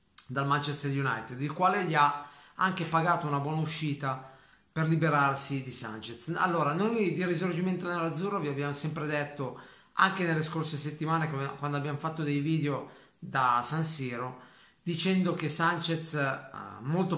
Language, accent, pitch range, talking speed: Italian, native, 140-165 Hz, 145 wpm